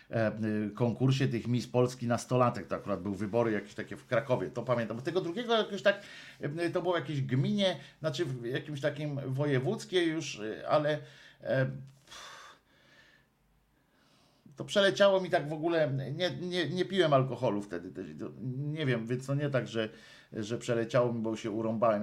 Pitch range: 120-155 Hz